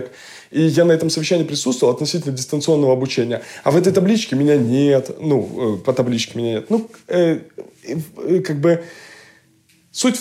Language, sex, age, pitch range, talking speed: Russian, male, 20-39, 125-170 Hz, 155 wpm